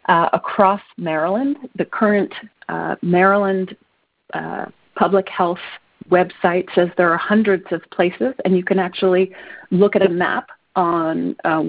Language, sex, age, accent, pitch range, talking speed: English, female, 40-59, American, 170-210 Hz, 140 wpm